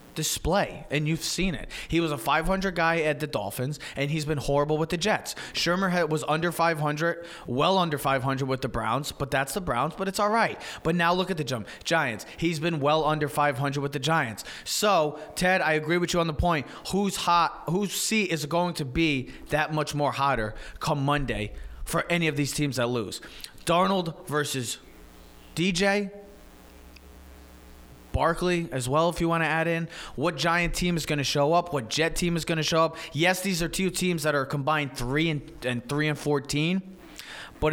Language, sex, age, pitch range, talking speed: English, male, 30-49, 130-170 Hz, 200 wpm